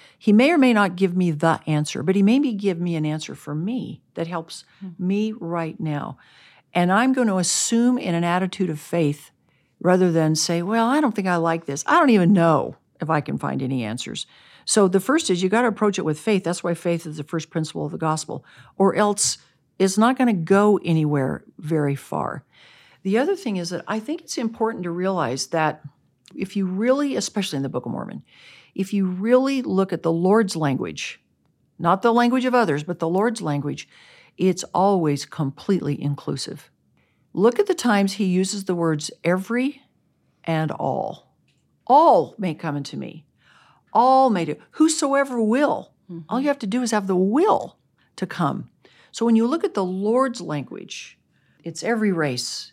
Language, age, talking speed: English, 60-79, 190 wpm